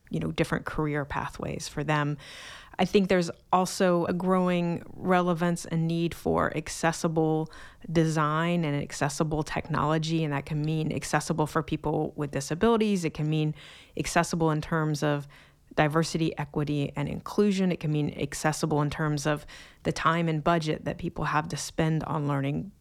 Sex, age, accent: female, 30-49, American